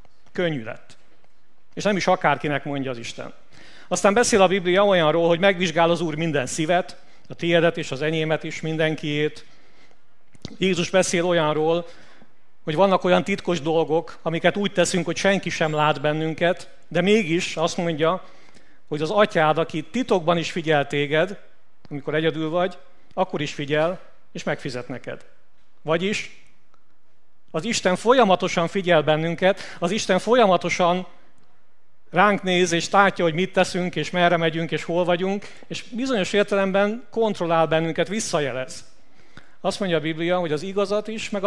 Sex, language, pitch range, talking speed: male, Hungarian, 160-190 Hz, 145 wpm